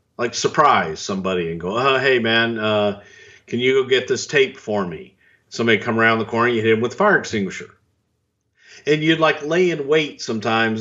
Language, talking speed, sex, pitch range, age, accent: English, 200 wpm, male, 105-130 Hz, 50-69, American